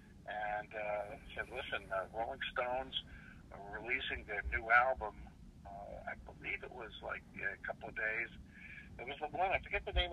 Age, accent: 60-79, American